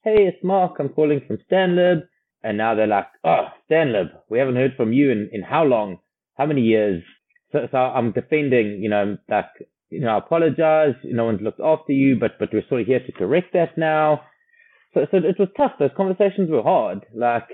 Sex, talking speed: male, 210 wpm